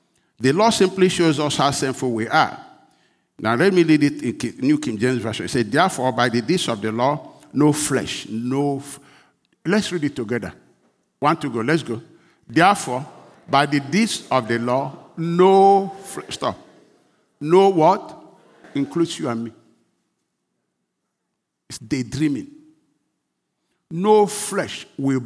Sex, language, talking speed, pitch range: male, English, 145 wpm, 120-170 Hz